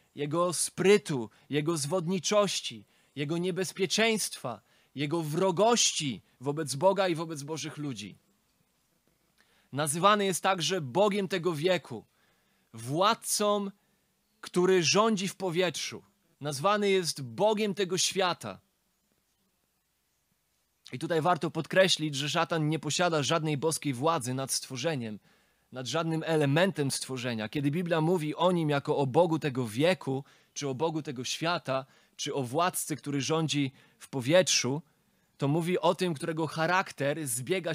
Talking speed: 120 wpm